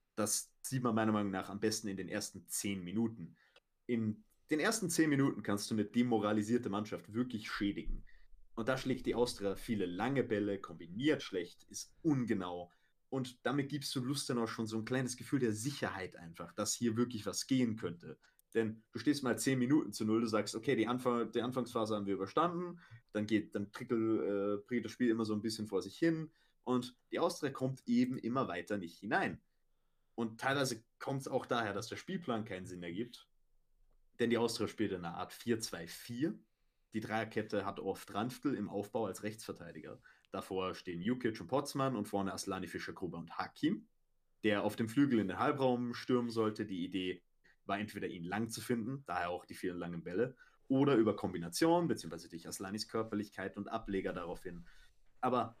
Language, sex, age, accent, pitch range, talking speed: German, male, 30-49, German, 100-125 Hz, 185 wpm